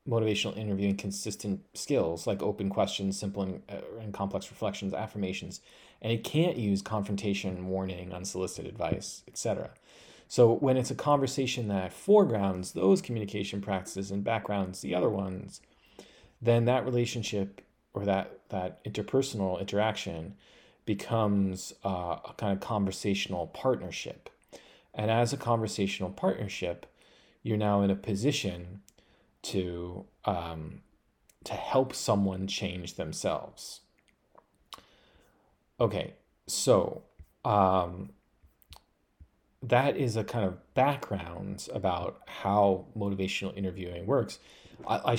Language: English